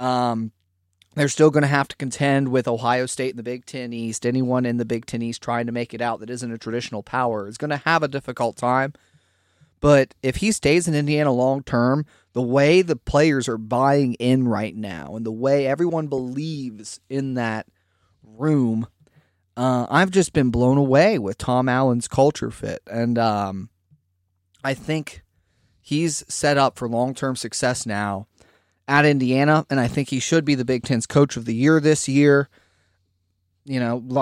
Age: 30-49